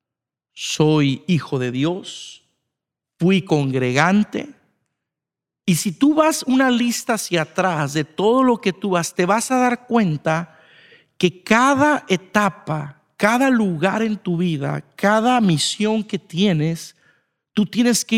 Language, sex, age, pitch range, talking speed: Spanish, male, 50-69, 155-220 Hz, 130 wpm